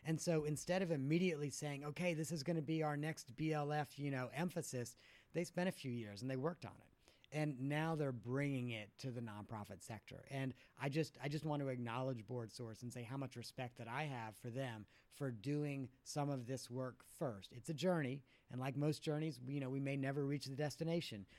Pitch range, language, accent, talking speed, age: 125-150 Hz, English, American, 220 wpm, 40-59